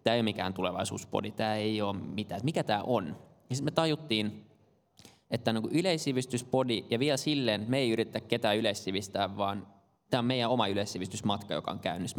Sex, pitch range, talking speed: male, 105-115 Hz, 170 wpm